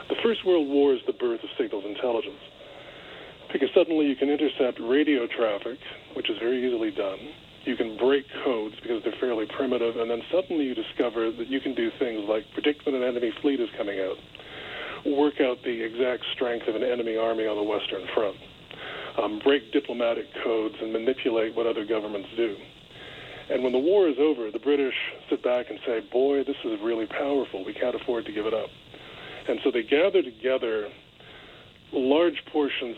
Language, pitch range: English, 115-155 Hz